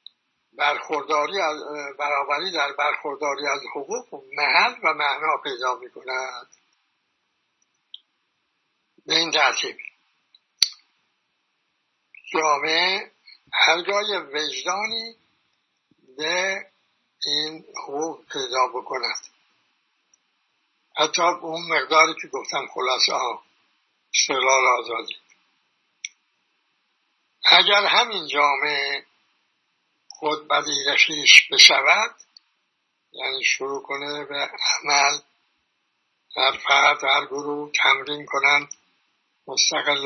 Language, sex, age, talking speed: Persian, male, 60-79, 80 wpm